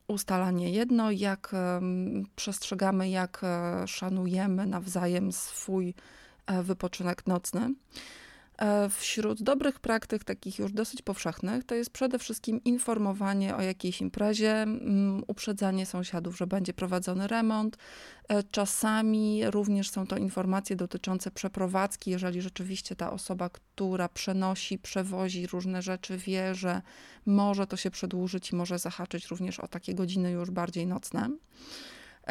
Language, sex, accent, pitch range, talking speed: Polish, female, native, 185-210 Hz, 115 wpm